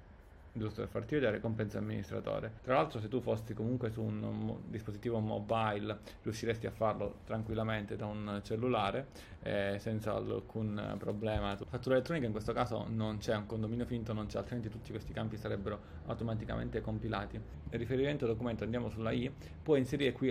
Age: 30-49